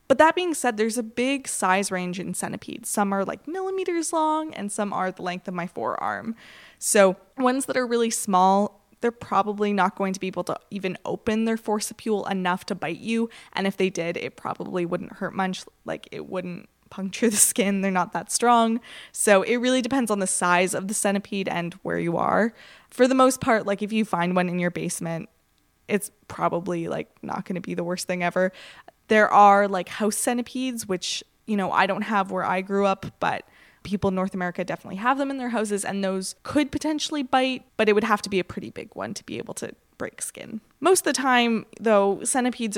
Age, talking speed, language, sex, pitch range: 20-39, 215 wpm, English, female, 185-240 Hz